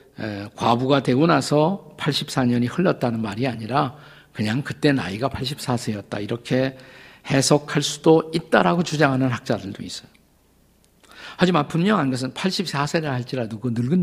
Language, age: Korean, 50-69